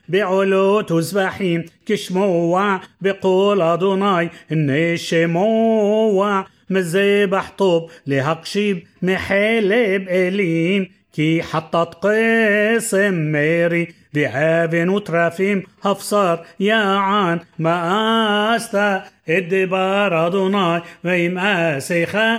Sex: male